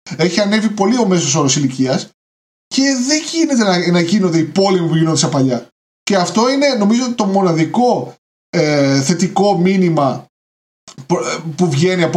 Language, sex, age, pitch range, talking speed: Greek, male, 20-39, 150-210 Hz, 145 wpm